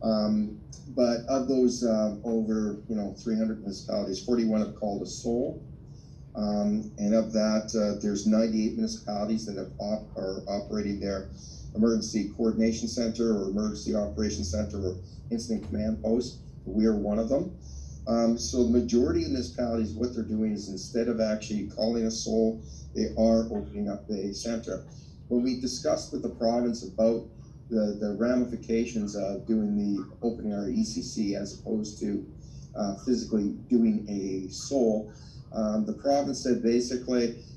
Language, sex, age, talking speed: English, male, 40-59, 155 wpm